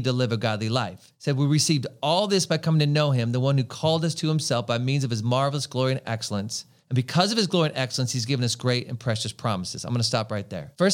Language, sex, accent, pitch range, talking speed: English, male, American, 130-160 Hz, 280 wpm